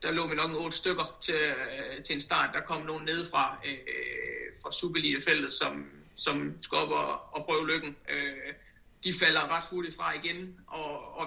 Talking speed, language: 180 wpm, Danish